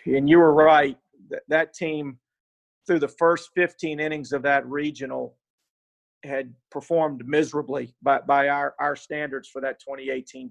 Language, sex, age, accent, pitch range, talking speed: English, male, 40-59, American, 135-155 Hz, 150 wpm